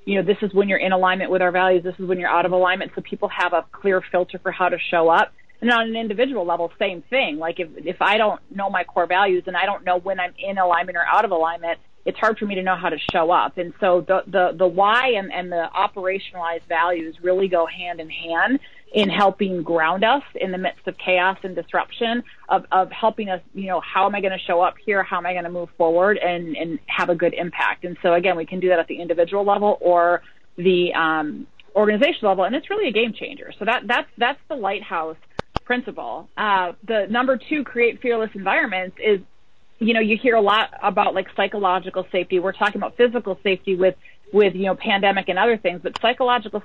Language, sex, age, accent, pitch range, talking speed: English, female, 30-49, American, 180-210 Hz, 235 wpm